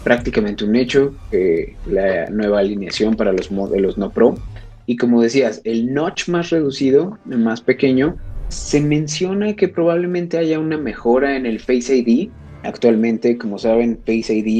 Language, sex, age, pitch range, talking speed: Spanish, male, 30-49, 105-135 Hz, 150 wpm